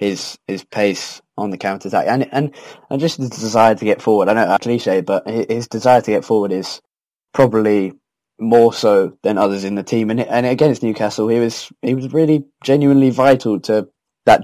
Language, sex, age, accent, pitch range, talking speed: English, male, 20-39, British, 105-135 Hz, 200 wpm